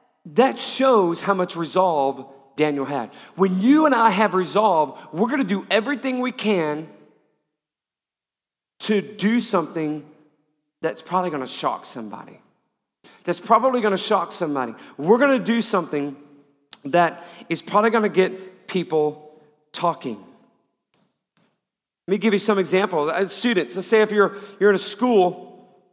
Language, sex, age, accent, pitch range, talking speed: English, male, 40-59, American, 150-205 Hz, 145 wpm